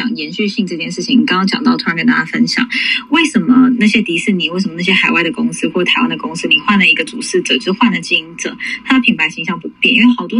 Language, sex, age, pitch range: Chinese, female, 20-39, 190-255 Hz